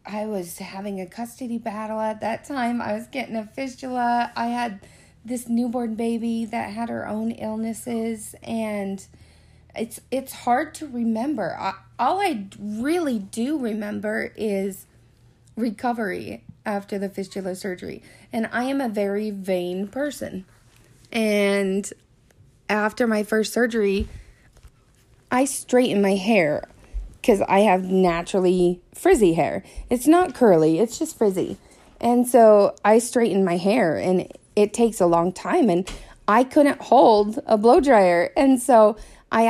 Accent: American